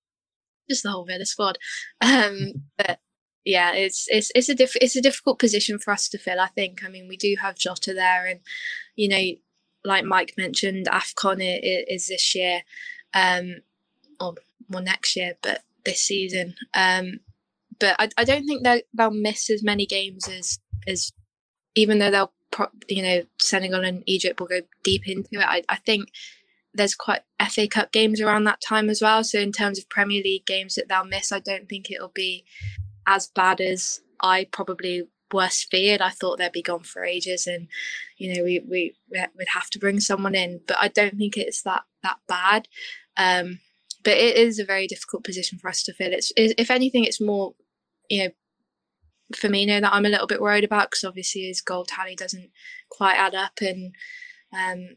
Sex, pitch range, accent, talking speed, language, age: female, 185-215 Hz, British, 195 wpm, English, 10-29